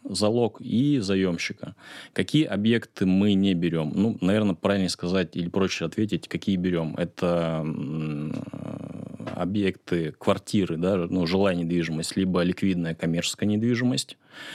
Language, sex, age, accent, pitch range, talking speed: Russian, male, 30-49, native, 85-100 Hz, 115 wpm